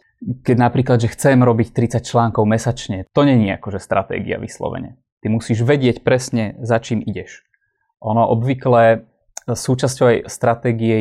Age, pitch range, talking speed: 20-39, 110-130 Hz, 135 wpm